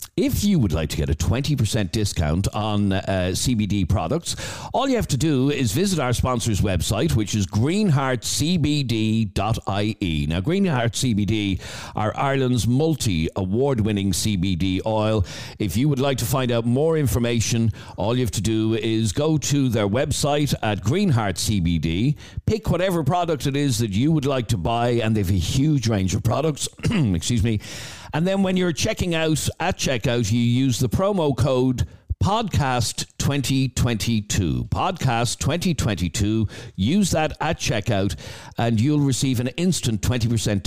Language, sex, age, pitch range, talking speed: English, male, 60-79, 100-140 Hz, 150 wpm